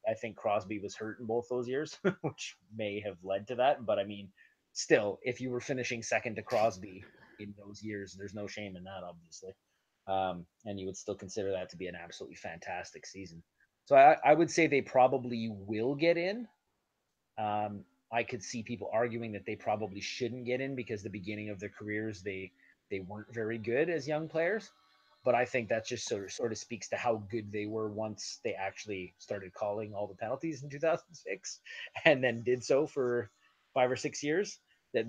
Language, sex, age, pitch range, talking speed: English, male, 30-49, 100-130 Hz, 200 wpm